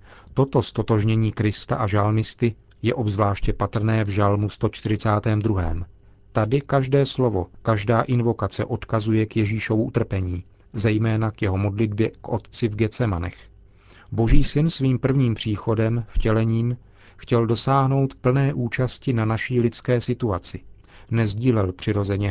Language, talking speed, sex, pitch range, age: Czech, 120 wpm, male, 100-120 Hz, 40-59